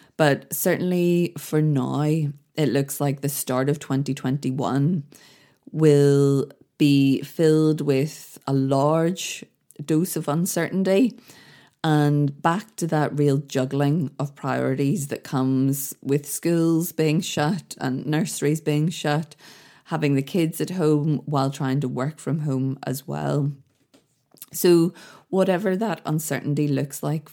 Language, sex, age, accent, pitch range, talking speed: English, female, 20-39, Irish, 140-165 Hz, 125 wpm